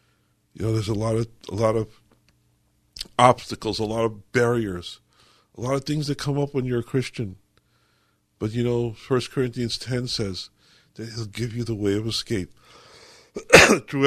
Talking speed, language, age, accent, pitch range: 175 wpm, English, 50-69, American, 110-150 Hz